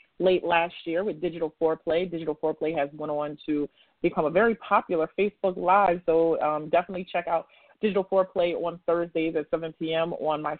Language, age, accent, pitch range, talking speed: English, 30-49, American, 160-185 Hz, 180 wpm